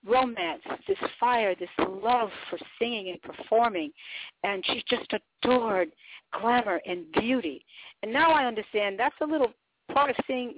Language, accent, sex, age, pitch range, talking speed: English, American, female, 50-69, 200-280 Hz, 145 wpm